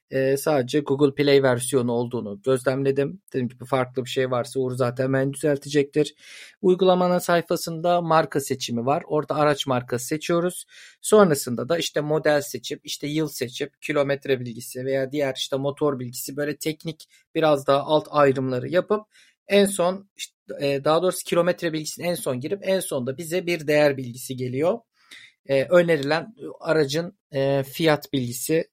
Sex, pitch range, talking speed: male, 135-175 Hz, 140 wpm